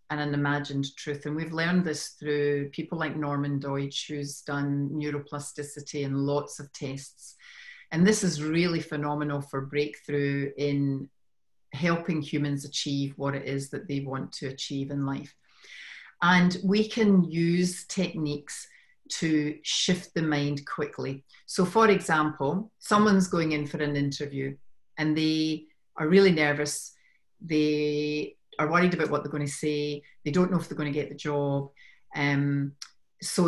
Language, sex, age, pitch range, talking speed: English, female, 40-59, 145-170 Hz, 150 wpm